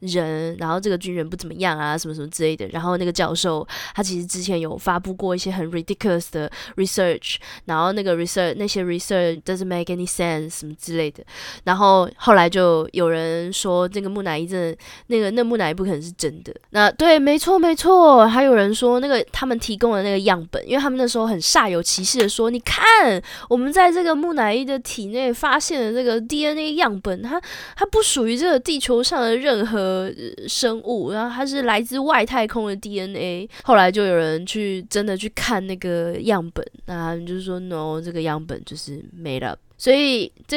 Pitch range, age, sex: 180-275 Hz, 10-29, female